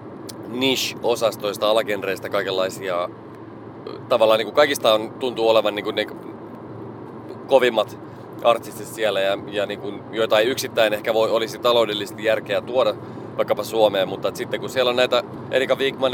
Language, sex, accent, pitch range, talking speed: Finnish, male, native, 100-120 Hz, 140 wpm